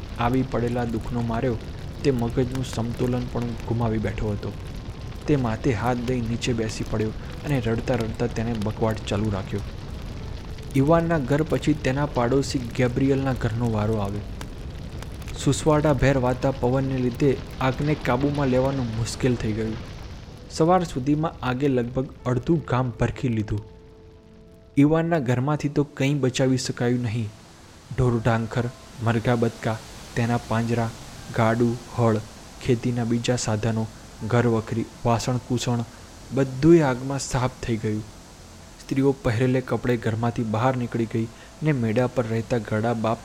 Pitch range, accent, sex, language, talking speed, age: 110-130 Hz, native, male, Gujarati, 130 wpm, 20-39